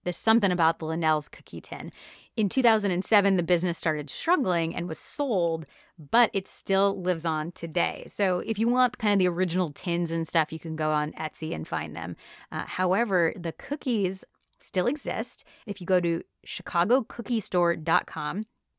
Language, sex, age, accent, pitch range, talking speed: English, female, 30-49, American, 165-205 Hz, 165 wpm